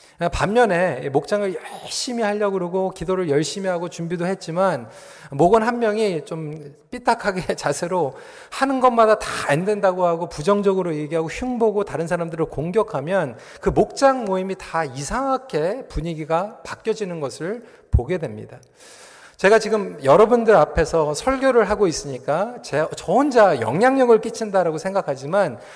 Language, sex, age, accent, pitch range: Korean, male, 40-59, native, 165-225 Hz